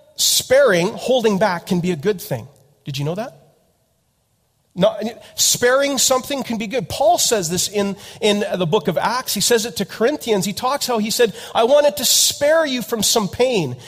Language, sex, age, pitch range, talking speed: English, male, 40-59, 170-235 Hz, 195 wpm